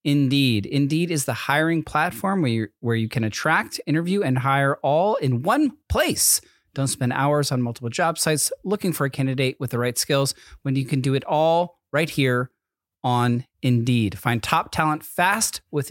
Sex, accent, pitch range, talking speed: male, American, 130-175 Hz, 185 wpm